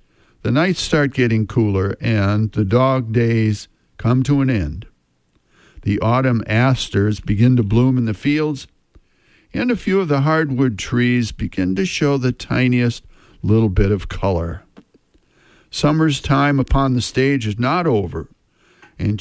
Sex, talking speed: male, 145 wpm